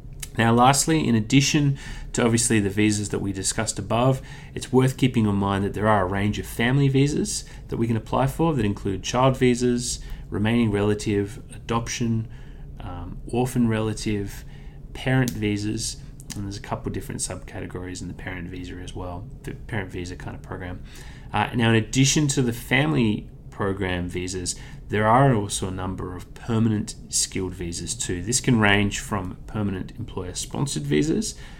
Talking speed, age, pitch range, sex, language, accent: 165 wpm, 30-49, 100-130 Hz, male, English, Australian